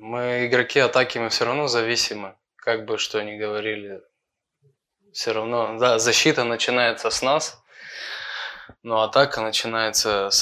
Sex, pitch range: male, 105-125 Hz